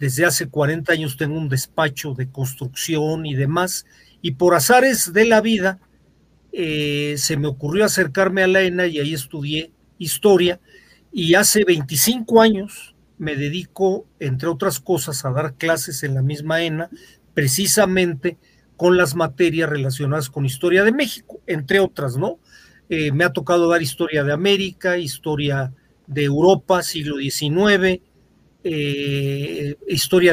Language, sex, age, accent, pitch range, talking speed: Spanish, male, 40-59, Mexican, 150-190 Hz, 140 wpm